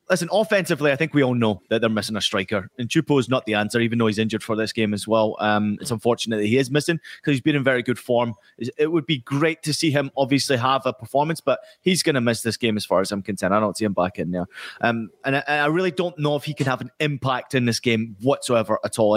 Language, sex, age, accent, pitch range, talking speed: English, male, 30-49, British, 115-150 Hz, 280 wpm